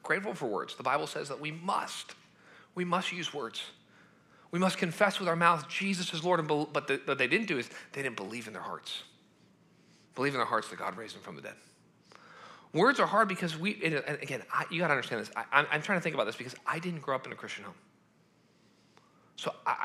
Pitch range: 155-210 Hz